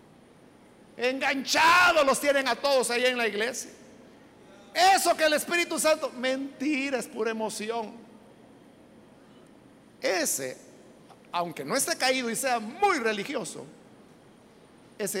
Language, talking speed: Spanish, 110 wpm